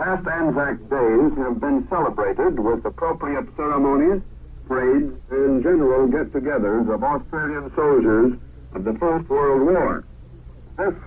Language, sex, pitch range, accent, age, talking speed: English, male, 115-185 Hz, American, 60-79, 120 wpm